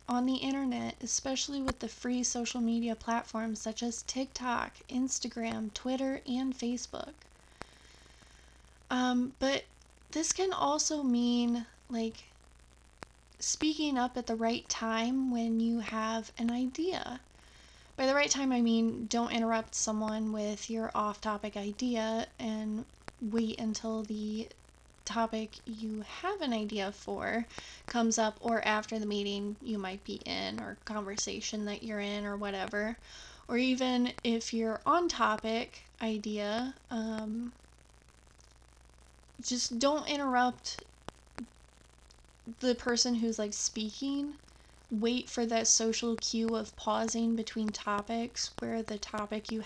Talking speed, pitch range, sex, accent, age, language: 125 wpm, 215-245 Hz, female, American, 20-39, English